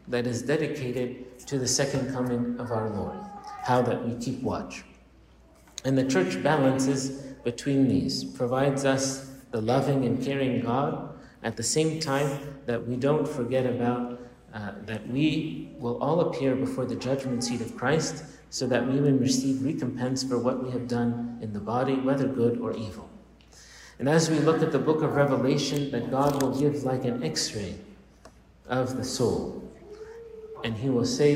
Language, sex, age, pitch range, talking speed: English, male, 50-69, 120-145 Hz, 170 wpm